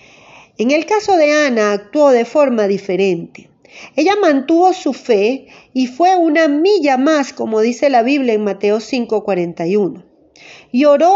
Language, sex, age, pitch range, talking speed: Spanish, female, 40-59, 210-295 Hz, 145 wpm